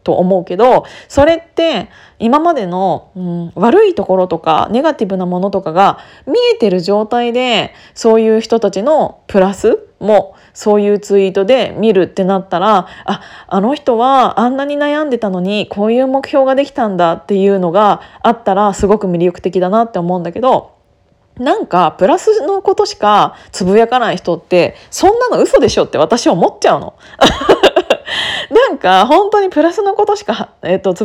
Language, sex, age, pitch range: Japanese, female, 20-39, 190-310 Hz